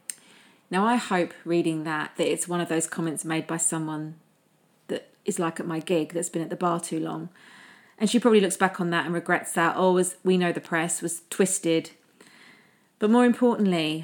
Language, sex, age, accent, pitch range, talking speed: English, female, 30-49, British, 170-200 Hz, 200 wpm